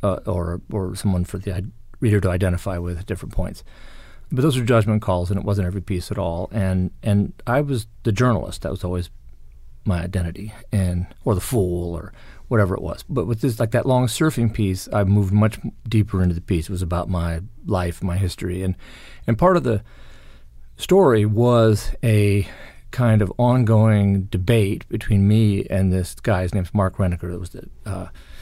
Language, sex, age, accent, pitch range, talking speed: English, male, 40-59, American, 90-110 Hz, 190 wpm